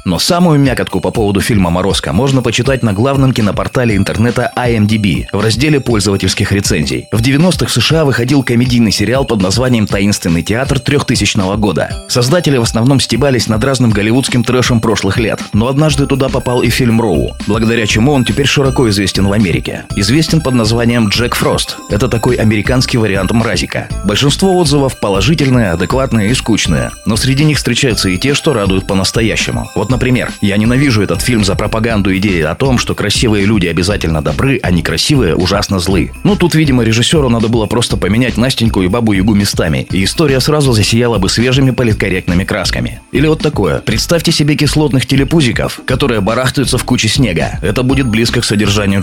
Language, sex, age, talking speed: Russian, male, 30-49, 170 wpm